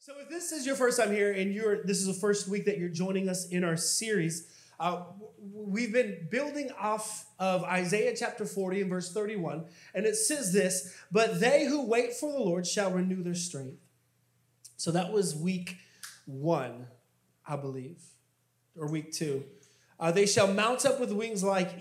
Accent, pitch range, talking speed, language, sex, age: American, 165-220 Hz, 185 wpm, English, male, 30-49